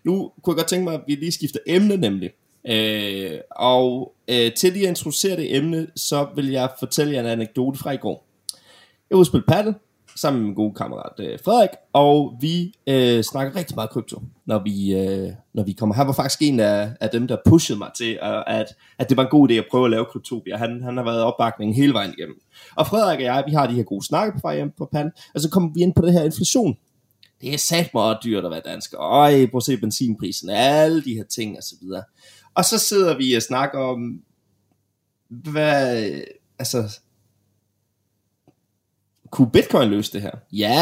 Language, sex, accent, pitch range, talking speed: Danish, male, native, 115-155 Hz, 210 wpm